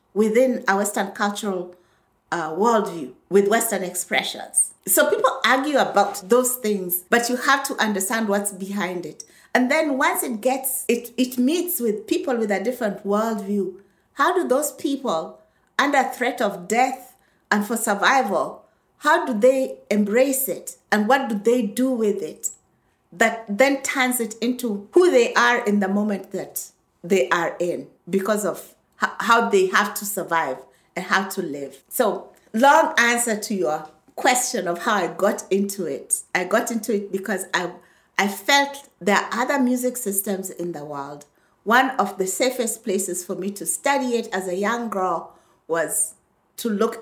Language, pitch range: English, 190-250 Hz